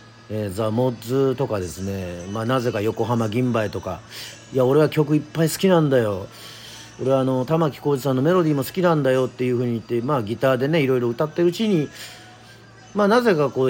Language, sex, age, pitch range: Japanese, male, 40-59, 110-135 Hz